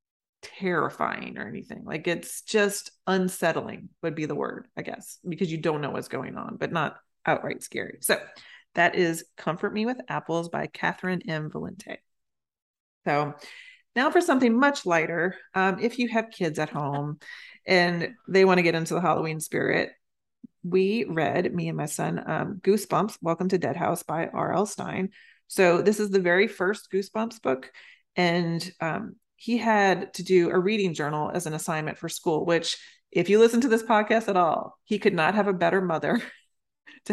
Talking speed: 180 wpm